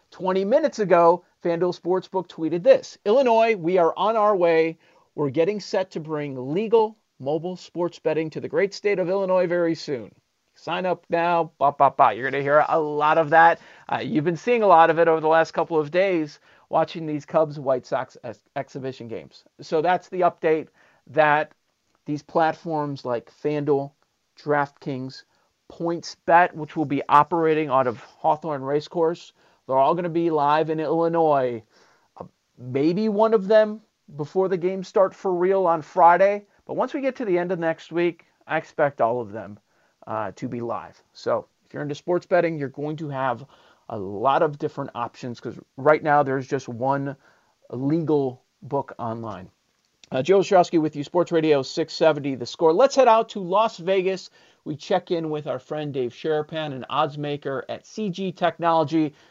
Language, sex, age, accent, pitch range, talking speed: English, male, 40-59, American, 145-180 Hz, 175 wpm